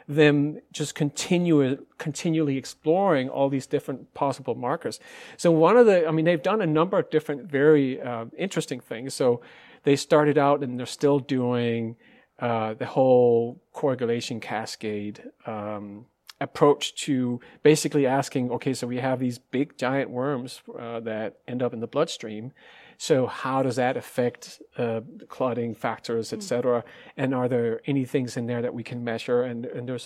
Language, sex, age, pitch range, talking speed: Danish, male, 40-59, 120-150 Hz, 165 wpm